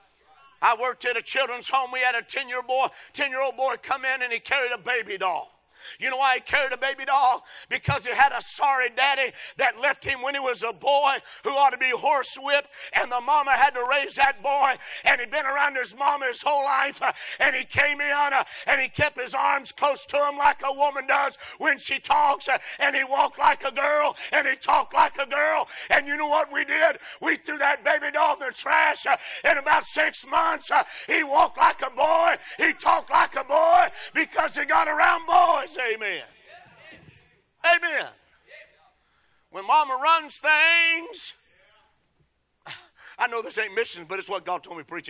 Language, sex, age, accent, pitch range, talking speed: English, male, 50-69, American, 250-295 Hz, 195 wpm